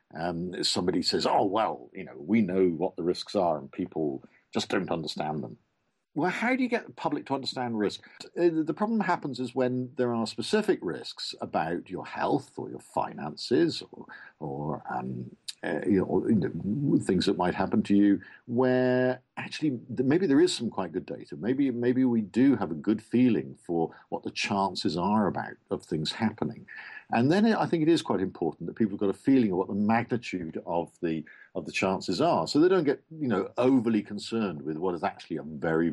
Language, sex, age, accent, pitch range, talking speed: English, male, 50-69, British, 100-135 Hz, 200 wpm